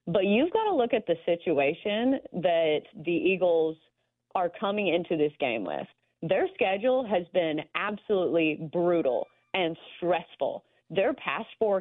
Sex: female